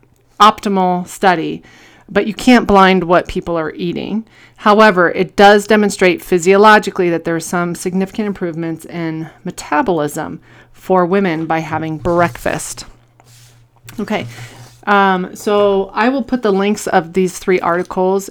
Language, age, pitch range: English, 30-49, 170-205 Hz